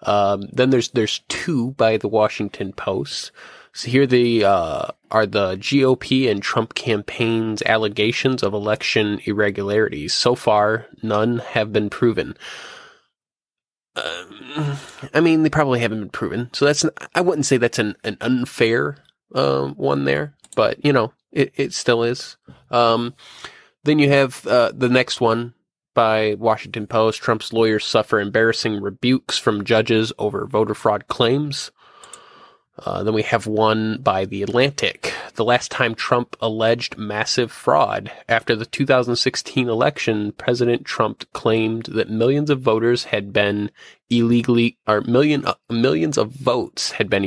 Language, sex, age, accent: English, male, 20-39, American